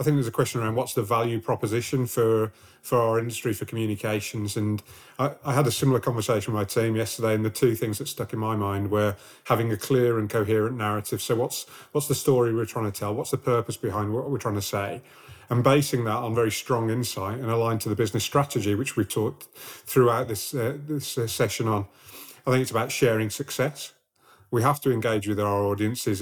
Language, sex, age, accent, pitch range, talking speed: English, male, 30-49, British, 105-130 Hz, 220 wpm